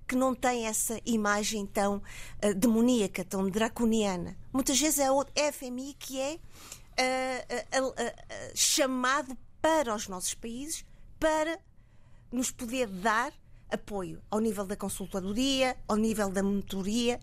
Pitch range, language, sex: 200-250 Hz, Portuguese, female